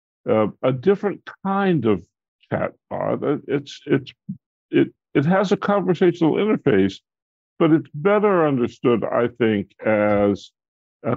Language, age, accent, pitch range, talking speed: English, 60-79, American, 95-130 Hz, 120 wpm